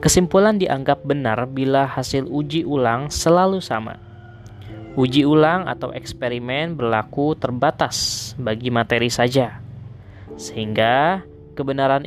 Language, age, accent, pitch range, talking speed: Indonesian, 20-39, native, 120-145 Hz, 100 wpm